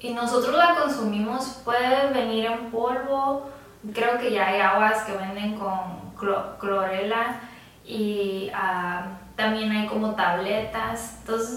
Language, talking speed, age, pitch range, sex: Spanish, 125 wpm, 10-29, 205-240 Hz, female